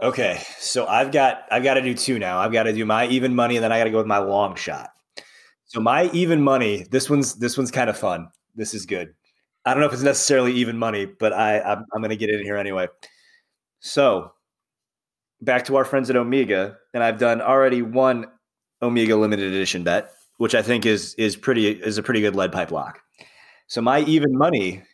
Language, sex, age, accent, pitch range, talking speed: English, male, 30-49, American, 110-150 Hz, 220 wpm